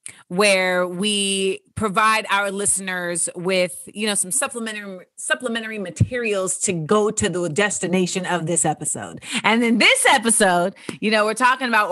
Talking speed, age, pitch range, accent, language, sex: 145 wpm, 30-49, 185-235 Hz, American, English, female